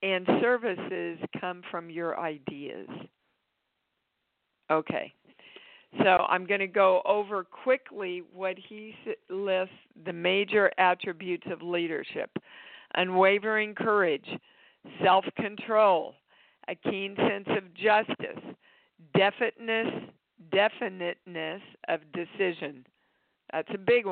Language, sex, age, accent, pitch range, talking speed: English, female, 50-69, American, 170-205 Hz, 90 wpm